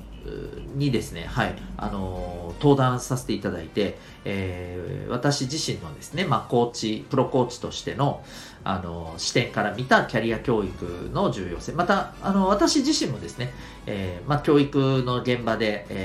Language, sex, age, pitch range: Japanese, male, 40-59, 95-140 Hz